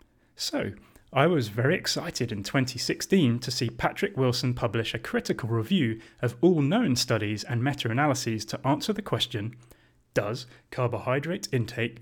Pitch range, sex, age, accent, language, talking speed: 115-135 Hz, male, 30-49, British, English, 140 wpm